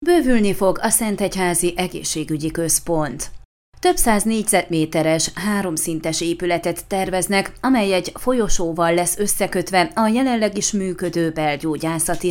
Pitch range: 170-220 Hz